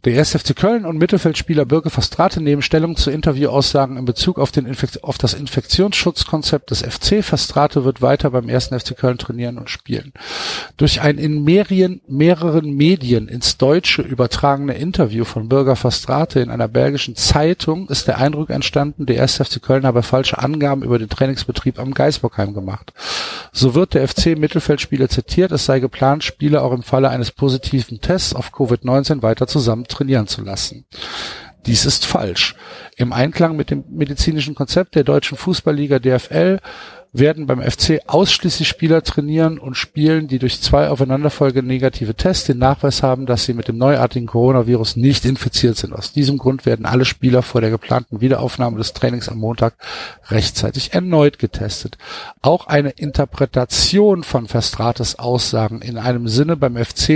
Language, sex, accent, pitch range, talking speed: German, male, German, 125-150 Hz, 160 wpm